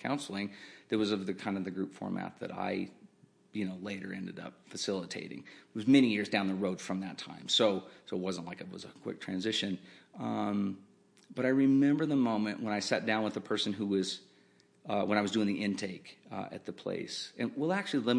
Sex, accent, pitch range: male, American, 95-110 Hz